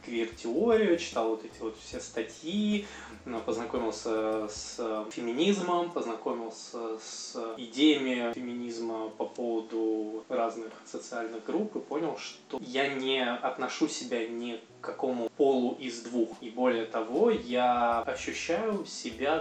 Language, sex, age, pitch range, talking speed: Russian, male, 20-39, 115-155 Hz, 115 wpm